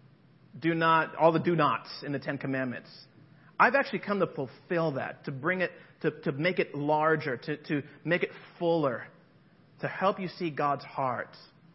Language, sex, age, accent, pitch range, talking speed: English, male, 40-59, American, 150-190 Hz, 180 wpm